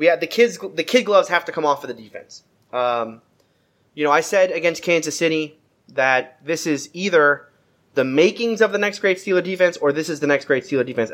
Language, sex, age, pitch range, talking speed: English, male, 30-49, 130-180 Hz, 225 wpm